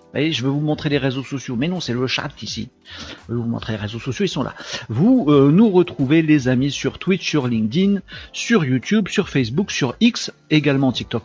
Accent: French